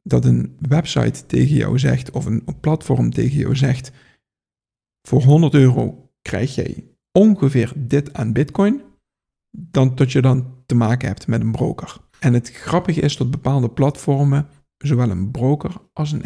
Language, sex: Dutch, male